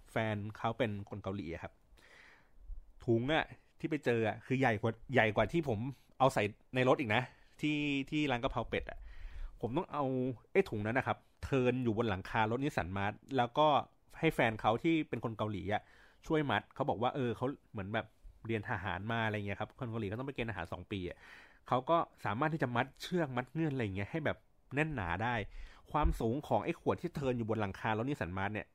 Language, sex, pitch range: Thai, male, 105-130 Hz